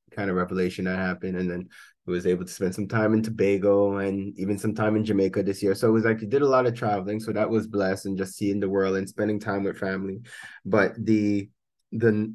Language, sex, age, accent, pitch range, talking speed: English, male, 20-39, American, 95-110 Hz, 250 wpm